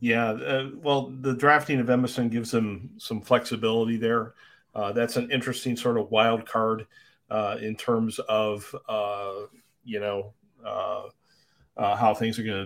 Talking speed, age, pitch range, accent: 160 wpm, 40-59, 115-135 Hz, American